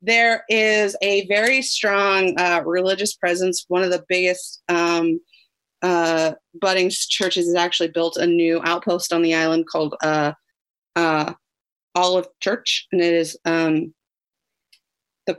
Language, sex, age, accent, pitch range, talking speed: English, female, 30-49, American, 175-220 Hz, 135 wpm